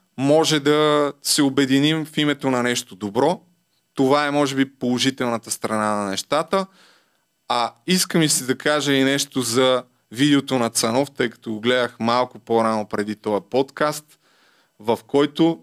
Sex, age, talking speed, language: male, 20-39, 150 wpm, Bulgarian